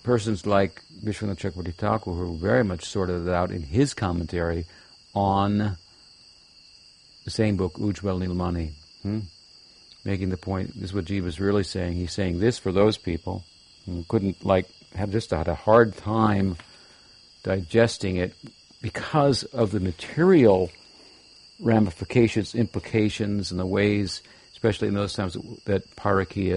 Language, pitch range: English, 90-110 Hz